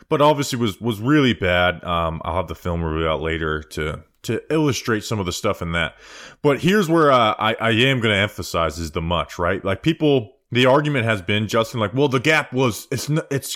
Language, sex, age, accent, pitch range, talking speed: English, male, 20-39, American, 85-115 Hz, 225 wpm